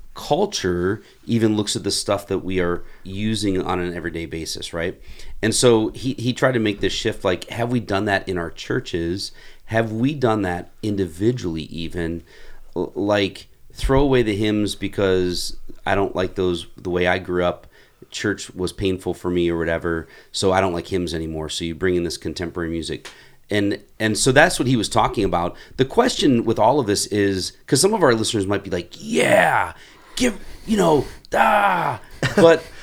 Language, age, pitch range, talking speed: English, 30-49, 90-130 Hz, 190 wpm